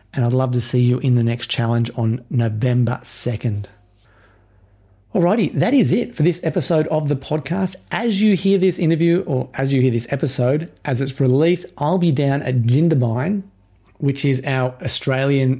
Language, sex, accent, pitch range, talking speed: English, male, Australian, 125-155 Hz, 175 wpm